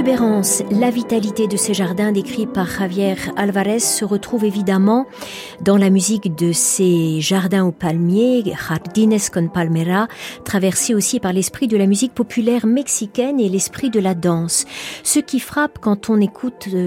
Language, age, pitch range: French, 50-69, 175-240 Hz